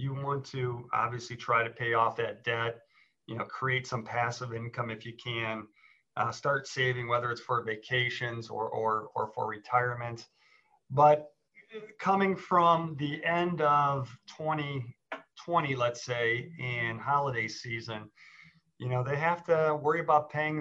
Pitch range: 120-150 Hz